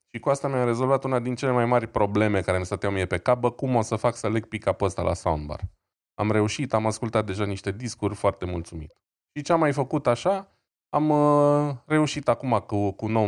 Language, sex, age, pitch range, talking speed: Romanian, male, 20-39, 95-125 Hz, 210 wpm